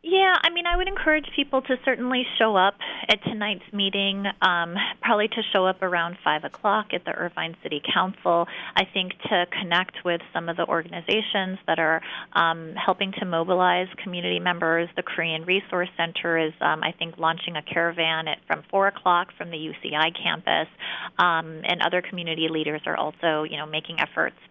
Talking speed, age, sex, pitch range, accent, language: 180 wpm, 30-49, female, 165-215 Hz, American, English